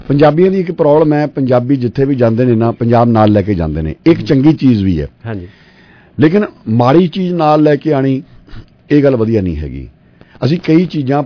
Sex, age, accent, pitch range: male, 50-69, Indian, 110-145 Hz